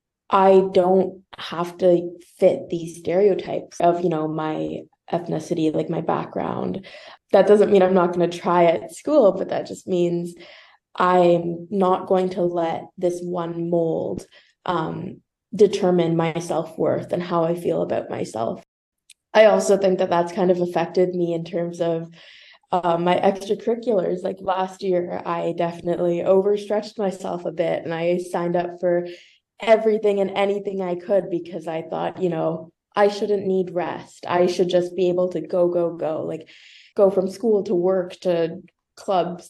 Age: 20-39